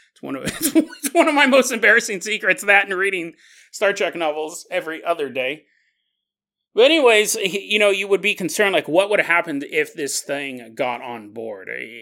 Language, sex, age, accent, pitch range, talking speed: English, male, 30-49, American, 150-230 Hz, 180 wpm